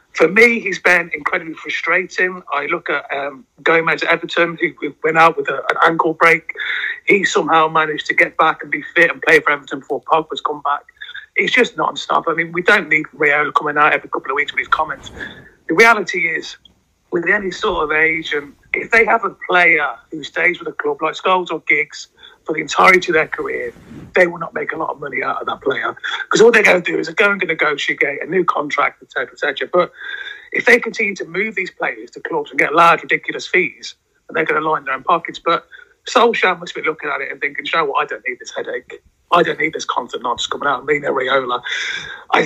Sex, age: male, 30-49